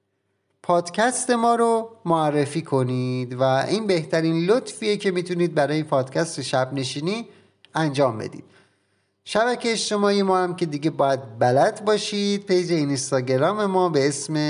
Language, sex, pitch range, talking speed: Persian, male, 125-180 Hz, 125 wpm